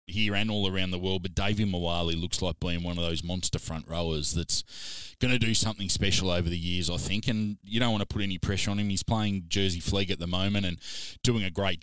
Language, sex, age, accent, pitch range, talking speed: English, male, 20-39, Australian, 90-105 Hz, 255 wpm